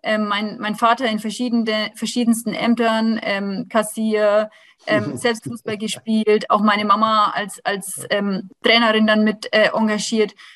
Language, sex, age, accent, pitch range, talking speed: German, female, 20-39, German, 210-235 Hz, 135 wpm